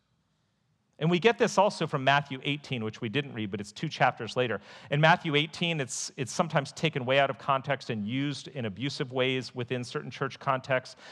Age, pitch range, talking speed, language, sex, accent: 40-59, 120-155 Hz, 200 wpm, English, male, American